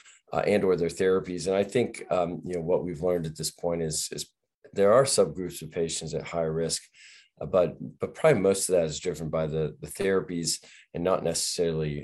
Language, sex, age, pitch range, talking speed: English, male, 40-59, 80-100 Hz, 215 wpm